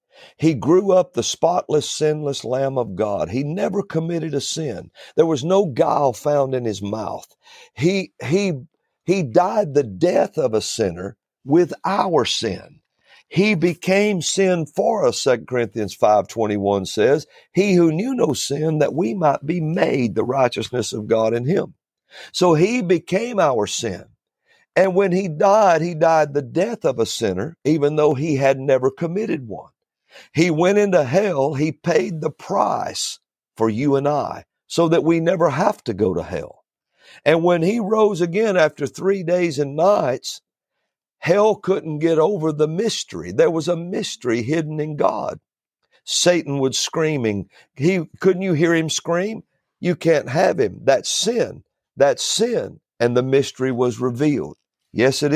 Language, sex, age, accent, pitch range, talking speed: English, male, 50-69, American, 140-185 Hz, 165 wpm